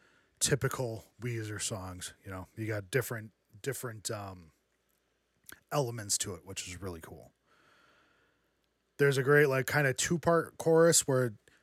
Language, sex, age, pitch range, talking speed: English, male, 20-39, 115-145 Hz, 140 wpm